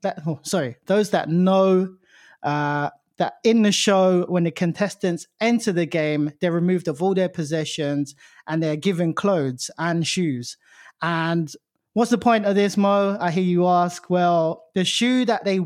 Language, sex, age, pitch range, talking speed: English, male, 20-39, 165-205 Hz, 165 wpm